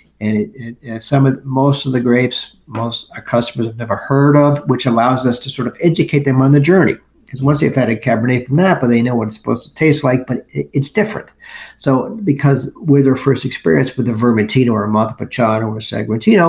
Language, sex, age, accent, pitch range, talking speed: English, male, 50-69, American, 115-135 Hz, 225 wpm